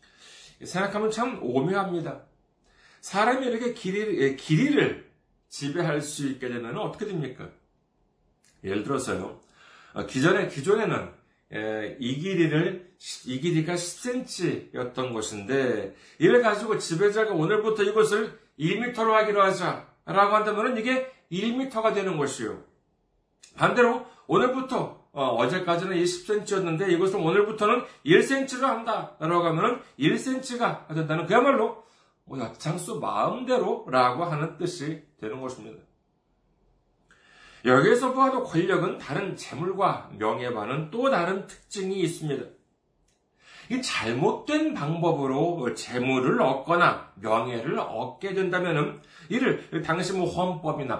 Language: Korean